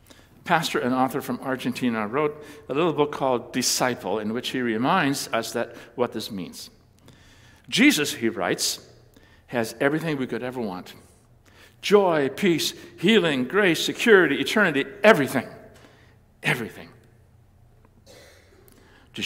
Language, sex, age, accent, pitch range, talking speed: English, male, 60-79, American, 110-140 Hz, 120 wpm